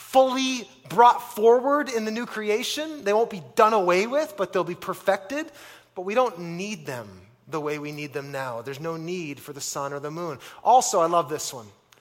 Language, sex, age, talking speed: English, male, 30-49, 210 wpm